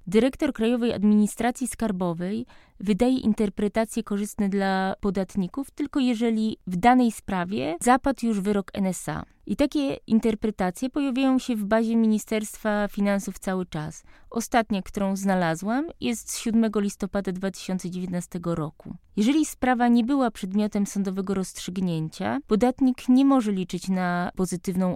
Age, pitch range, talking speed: 20-39, 190-235 Hz, 125 wpm